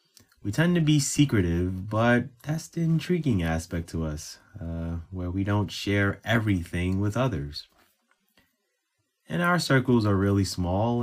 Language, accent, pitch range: English, American, 90-135 Hz